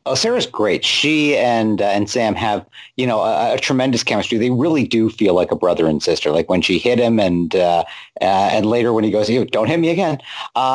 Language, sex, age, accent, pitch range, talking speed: English, male, 50-69, American, 105-125 Hz, 240 wpm